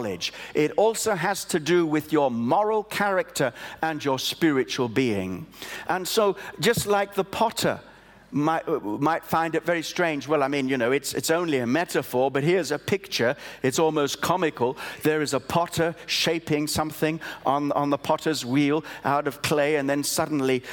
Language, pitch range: English, 150-210 Hz